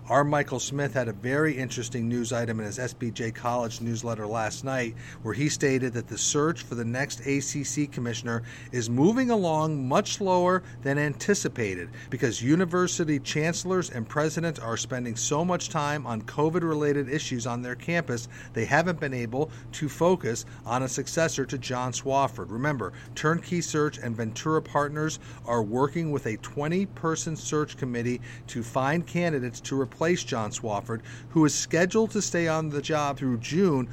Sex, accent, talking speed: male, American, 165 wpm